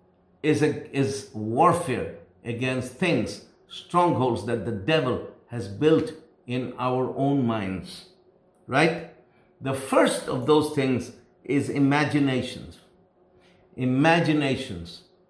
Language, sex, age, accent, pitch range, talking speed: English, male, 50-69, Indian, 130-160 Hz, 100 wpm